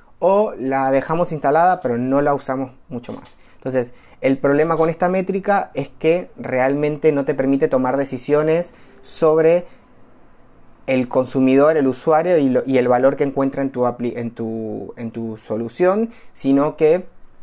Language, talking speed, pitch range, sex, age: Spanish, 140 wpm, 120-150 Hz, male, 30-49